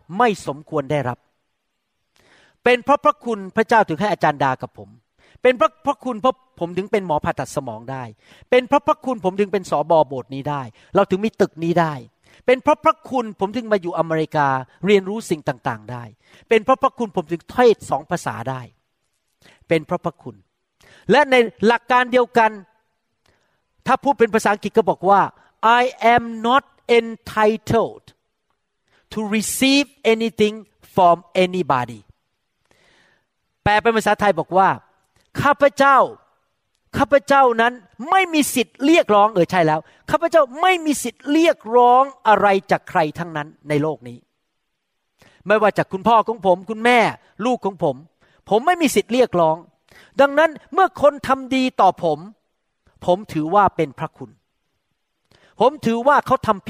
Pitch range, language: 160-250 Hz, Thai